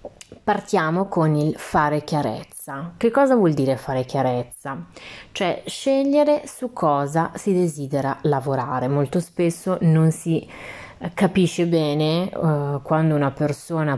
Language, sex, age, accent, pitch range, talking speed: Italian, female, 30-49, native, 145-180 Hz, 120 wpm